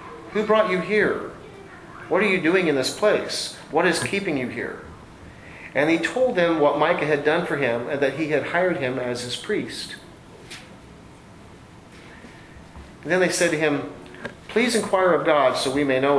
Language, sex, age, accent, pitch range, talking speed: English, male, 40-59, American, 130-155 Hz, 180 wpm